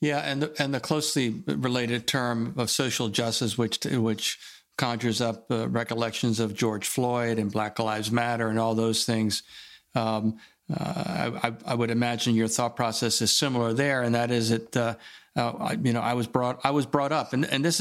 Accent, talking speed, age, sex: American, 195 wpm, 50-69, male